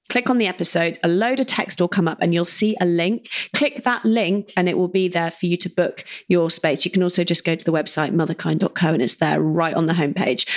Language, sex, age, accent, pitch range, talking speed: English, female, 30-49, British, 175-220 Hz, 260 wpm